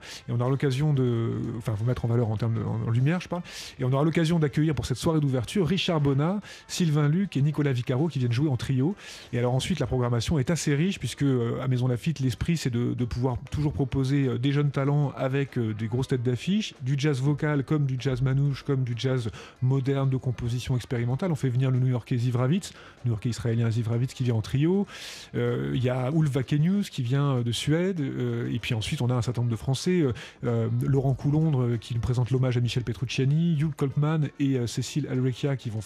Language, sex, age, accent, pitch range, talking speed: French, male, 30-49, French, 125-155 Hz, 225 wpm